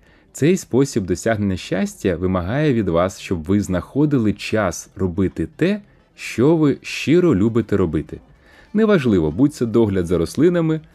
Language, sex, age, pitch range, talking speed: Ukrainian, male, 30-49, 95-130 Hz, 130 wpm